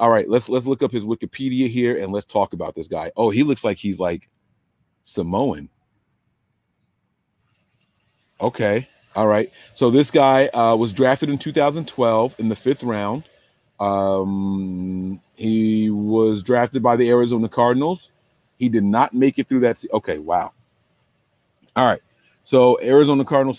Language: English